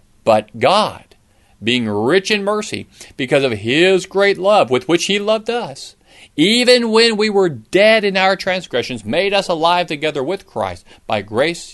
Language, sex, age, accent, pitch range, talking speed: English, male, 40-59, American, 130-195 Hz, 165 wpm